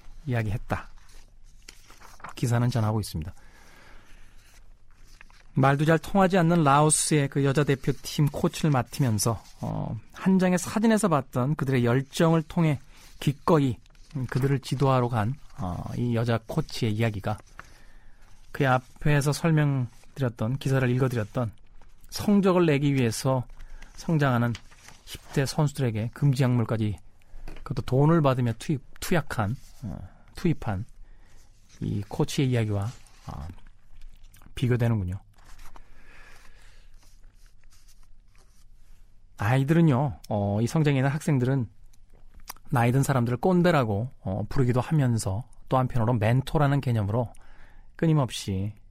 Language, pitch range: Korean, 100-140 Hz